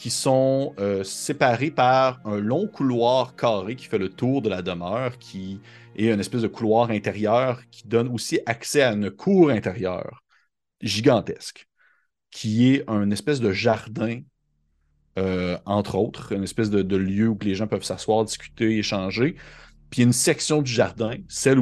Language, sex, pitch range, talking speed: French, male, 100-120 Hz, 165 wpm